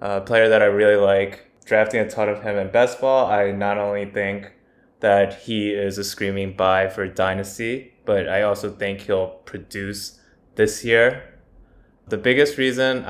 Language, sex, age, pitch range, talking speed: English, male, 20-39, 100-110 Hz, 175 wpm